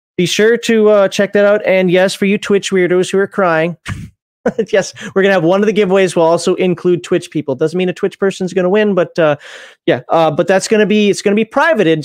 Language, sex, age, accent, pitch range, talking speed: English, male, 30-49, American, 160-210 Hz, 240 wpm